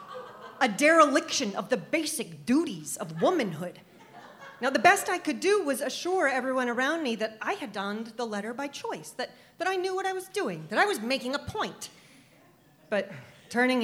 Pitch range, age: 180-255 Hz, 40-59